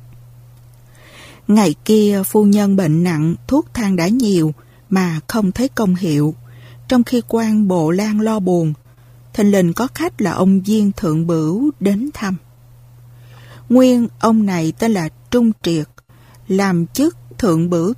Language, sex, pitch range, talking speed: Vietnamese, female, 150-220 Hz, 145 wpm